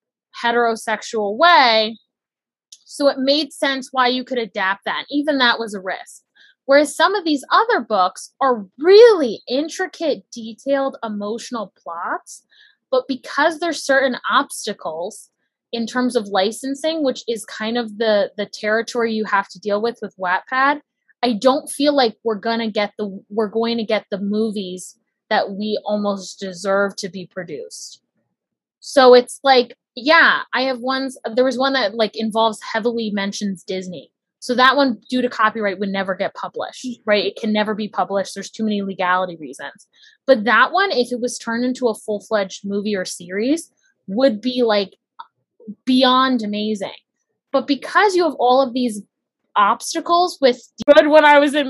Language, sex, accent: English, female, American